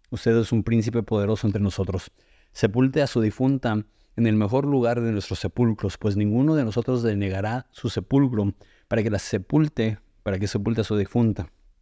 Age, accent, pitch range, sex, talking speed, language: 30-49, Mexican, 100-120 Hz, male, 180 wpm, Spanish